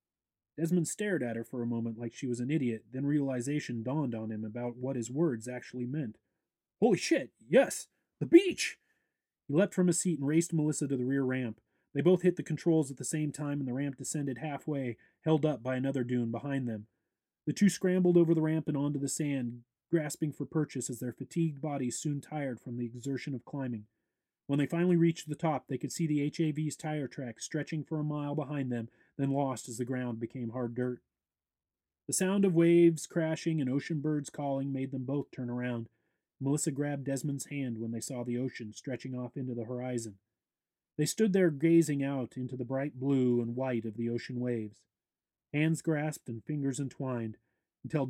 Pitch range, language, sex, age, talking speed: 120-150 Hz, English, male, 30-49, 200 wpm